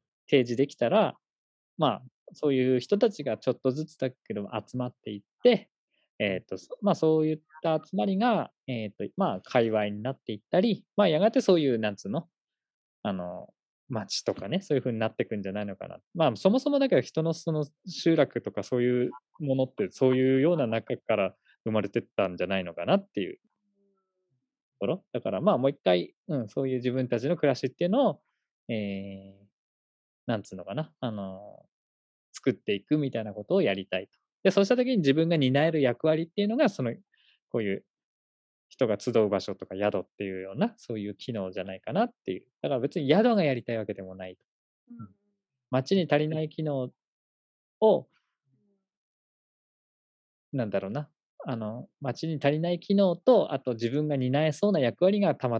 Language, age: Japanese, 20-39